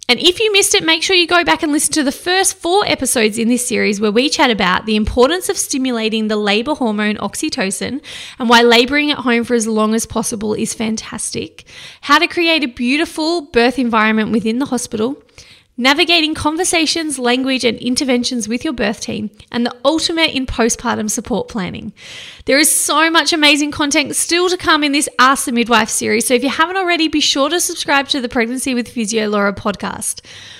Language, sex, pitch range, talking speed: English, female, 235-325 Hz, 200 wpm